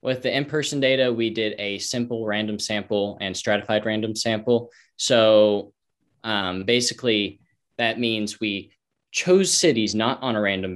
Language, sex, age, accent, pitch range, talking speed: English, male, 10-29, American, 100-115 Hz, 145 wpm